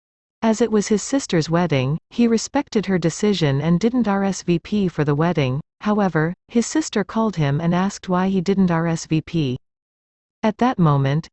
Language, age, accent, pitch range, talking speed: French, 40-59, American, 155-210 Hz, 160 wpm